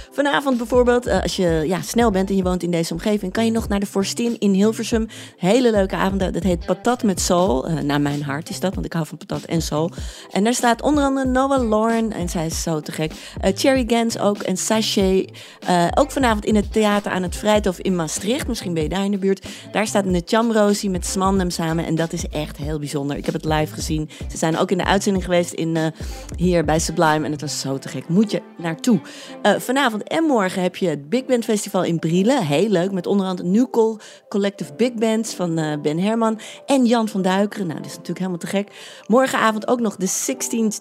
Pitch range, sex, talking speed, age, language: 175-230 Hz, female, 230 wpm, 40-59, Dutch